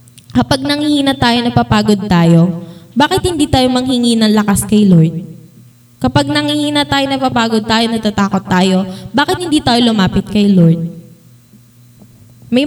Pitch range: 175-250 Hz